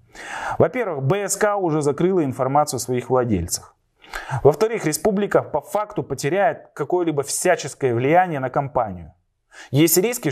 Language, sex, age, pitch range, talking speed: Russian, male, 30-49, 125-175 Hz, 115 wpm